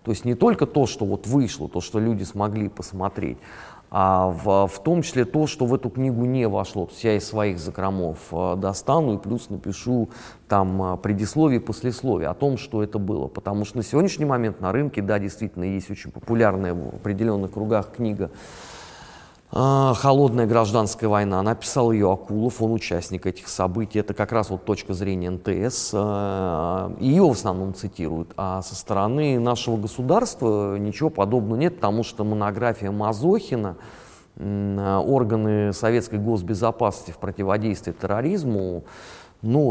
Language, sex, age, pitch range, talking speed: Russian, male, 30-49, 95-120 Hz, 150 wpm